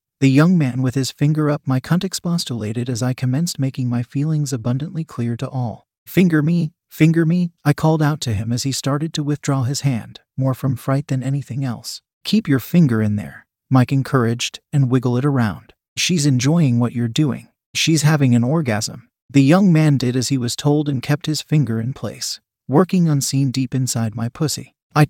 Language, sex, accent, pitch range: English, male, American, 125-150 Hz